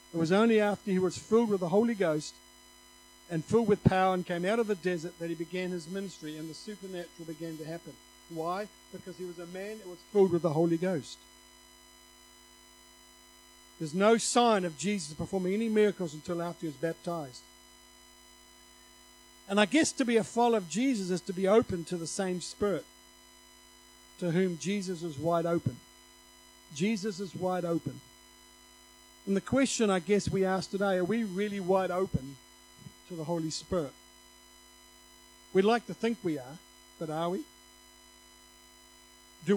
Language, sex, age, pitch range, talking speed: English, male, 50-69, 165-205 Hz, 170 wpm